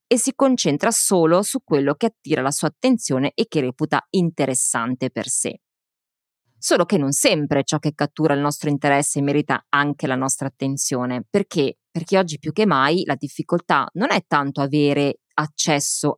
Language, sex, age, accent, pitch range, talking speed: Italian, female, 20-39, native, 135-175 Hz, 165 wpm